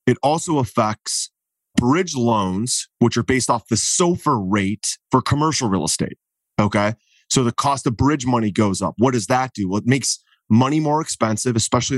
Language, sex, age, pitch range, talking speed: English, male, 30-49, 110-135 Hz, 180 wpm